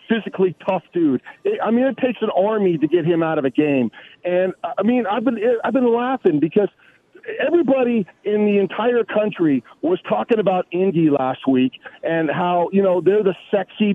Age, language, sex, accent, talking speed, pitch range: 40-59, English, male, American, 185 wpm, 185-250 Hz